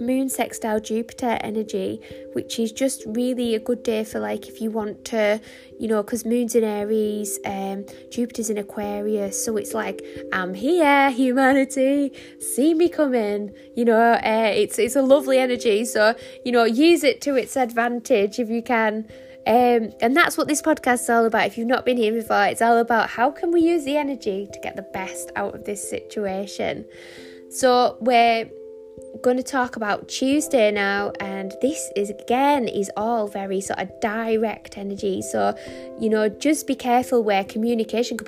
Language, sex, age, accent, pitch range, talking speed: English, female, 10-29, British, 205-250 Hz, 180 wpm